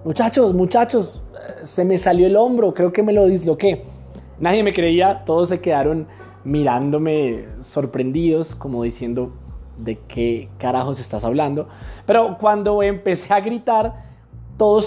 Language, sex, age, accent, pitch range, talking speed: English, male, 20-39, Colombian, 140-210 Hz, 135 wpm